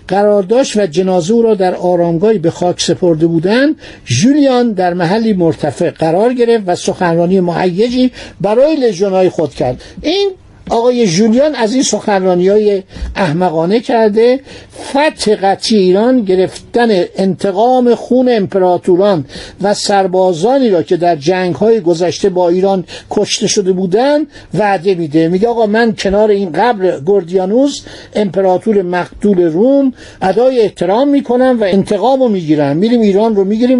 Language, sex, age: Persian, male, 60-79